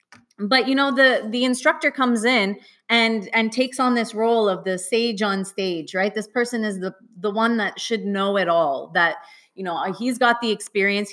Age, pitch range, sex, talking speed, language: 30-49, 180-230 Hz, female, 205 wpm, English